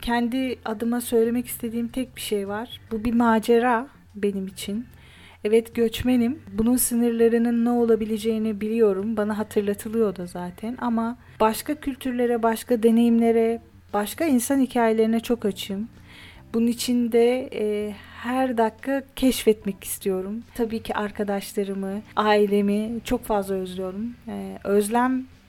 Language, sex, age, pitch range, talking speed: Turkish, female, 30-49, 205-235 Hz, 120 wpm